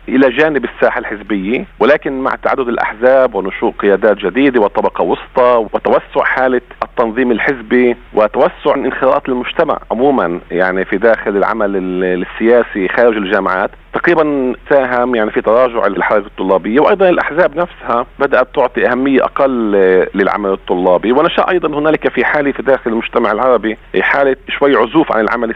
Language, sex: Arabic, male